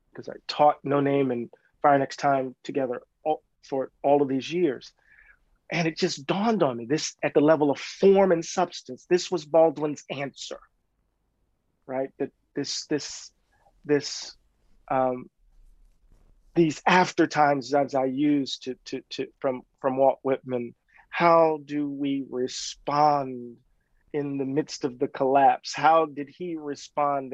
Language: English